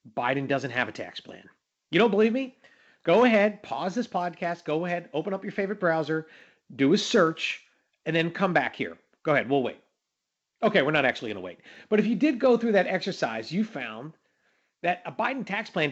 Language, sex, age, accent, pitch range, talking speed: English, male, 40-59, American, 160-230 Hz, 210 wpm